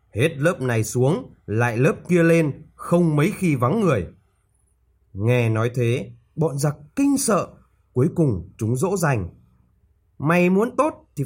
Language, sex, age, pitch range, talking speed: Vietnamese, male, 20-39, 115-170 Hz, 155 wpm